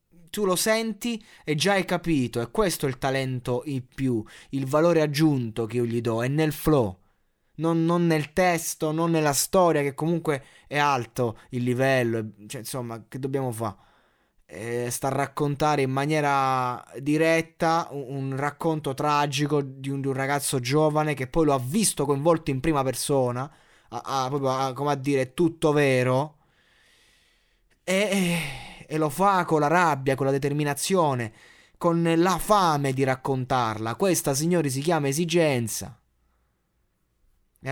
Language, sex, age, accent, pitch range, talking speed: Italian, male, 20-39, native, 130-165 Hz, 155 wpm